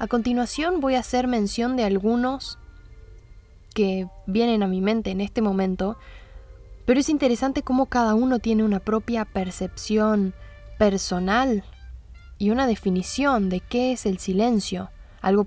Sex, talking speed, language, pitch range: female, 140 wpm, Spanish, 190-245 Hz